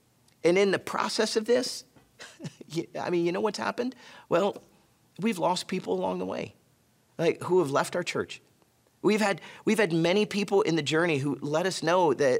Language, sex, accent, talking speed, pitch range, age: English, male, American, 190 wpm, 135-200 Hz, 40-59